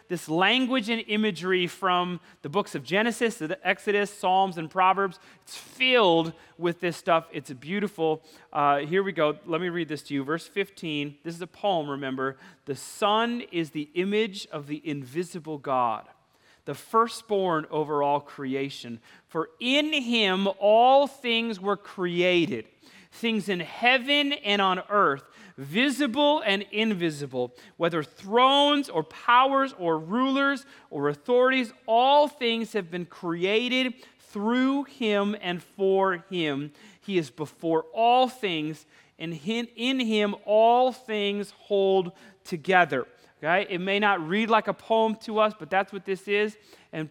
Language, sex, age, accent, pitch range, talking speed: English, male, 30-49, American, 165-225 Hz, 145 wpm